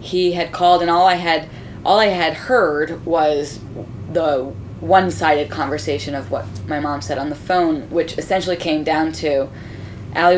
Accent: American